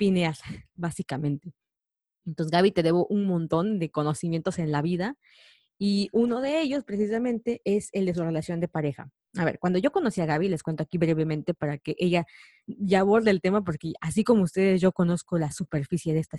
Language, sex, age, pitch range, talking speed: Spanish, female, 20-39, 165-200 Hz, 195 wpm